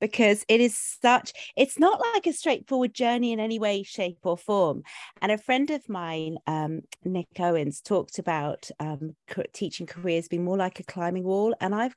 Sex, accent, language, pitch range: female, British, English, 170-225 Hz